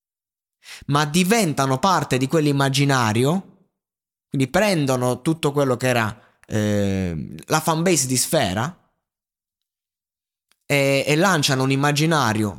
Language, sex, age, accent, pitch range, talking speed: Italian, male, 20-39, native, 110-155 Hz, 100 wpm